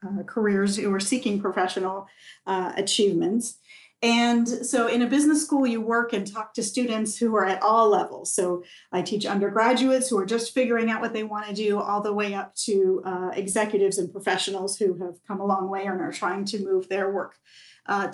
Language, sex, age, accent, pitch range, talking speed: English, female, 40-59, American, 195-230 Hz, 200 wpm